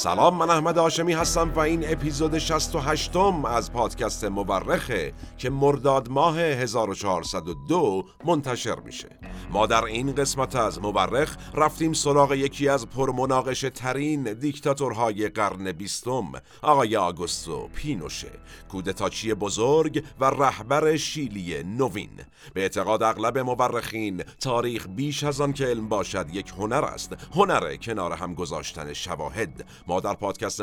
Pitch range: 105-140 Hz